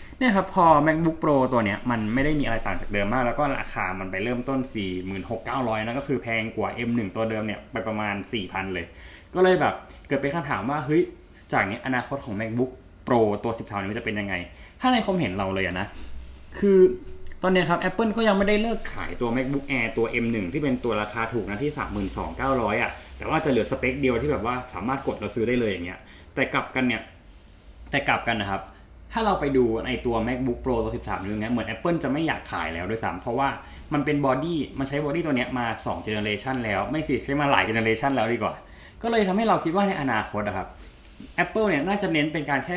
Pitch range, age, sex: 105-140 Hz, 20-39, male